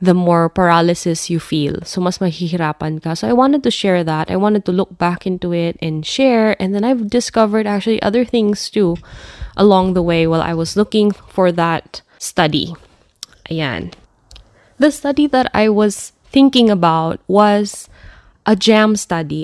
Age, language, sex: 20-39, Filipino, female